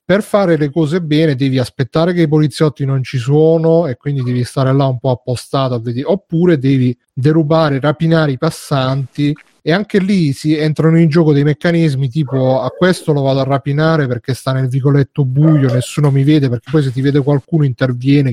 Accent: native